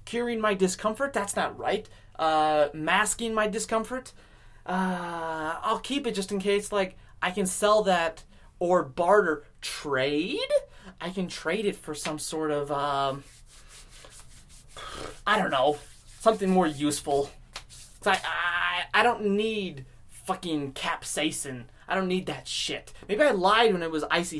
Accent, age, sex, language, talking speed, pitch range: American, 20-39, male, English, 145 wpm, 145-200 Hz